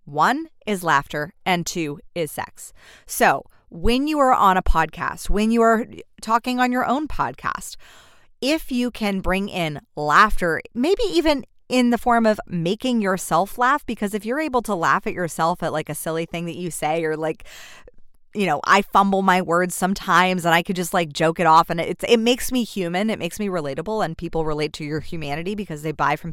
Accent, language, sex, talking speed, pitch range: American, English, female, 205 wpm, 165-225 Hz